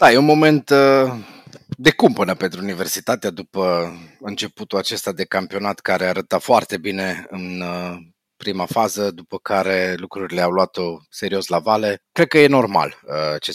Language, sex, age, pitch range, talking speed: Romanian, male, 30-49, 85-110 Hz, 155 wpm